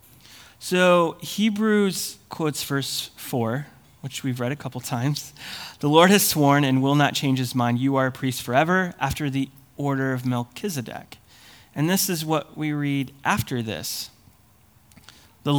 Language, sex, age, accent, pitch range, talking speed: English, male, 30-49, American, 115-150 Hz, 155 wpm